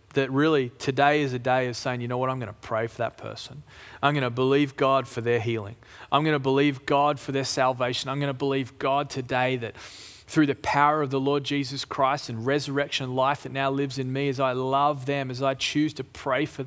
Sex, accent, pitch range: male, Australian, 125-150 Hz